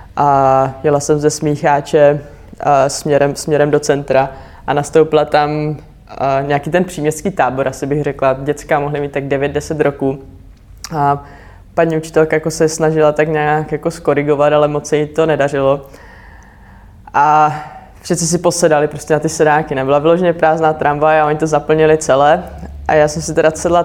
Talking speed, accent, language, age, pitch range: 165 wpm, native, Czech, 20-39, 150-175 Hz